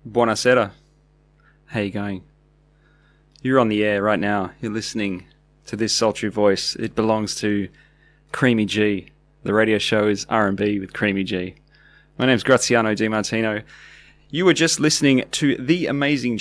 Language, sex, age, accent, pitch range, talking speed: English, male, 20-39, Australian, 105-145 Hz, 155 wpm